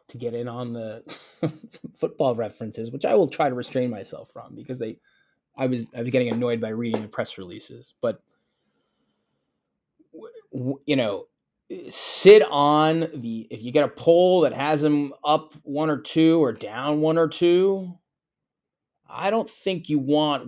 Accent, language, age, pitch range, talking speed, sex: American, English, 20-39, 130-170 Hz, 165 wpm, male